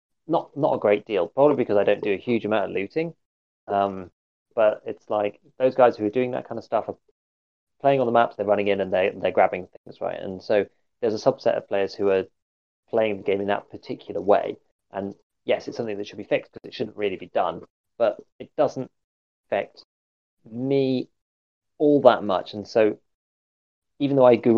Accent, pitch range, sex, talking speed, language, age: British, 95-130 Hz, male, 205 wpm, English, 20-39